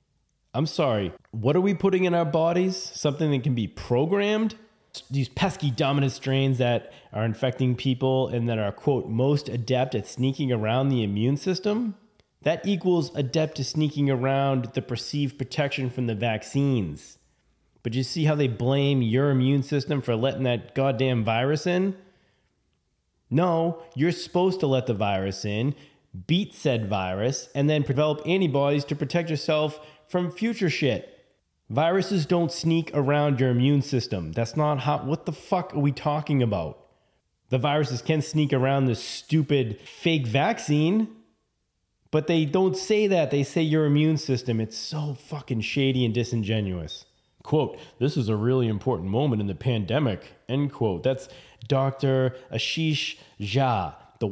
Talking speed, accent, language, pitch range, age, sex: 155 wpm, American, English, 120-155 Hz, 30-49, male